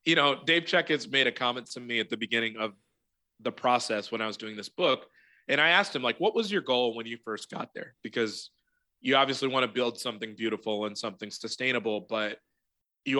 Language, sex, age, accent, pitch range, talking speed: English, male, 20-39, American, 115-130 Hz, 225 wpm